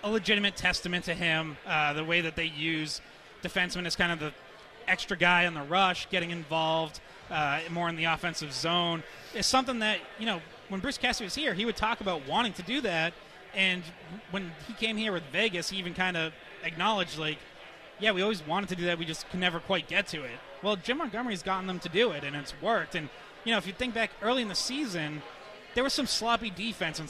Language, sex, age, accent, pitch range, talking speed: English, male, 30-49, American, 165-205 Hz, 230 wpm